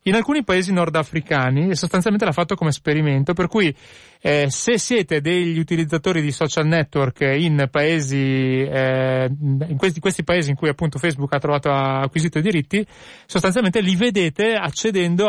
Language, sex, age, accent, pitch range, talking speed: Italian, male, 30-49, native, 135-160 Hz, 160 wpm